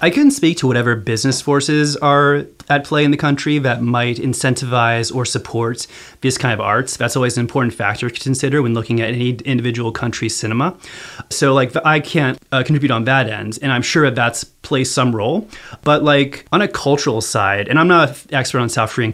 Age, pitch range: 30-49, 115-145 Hz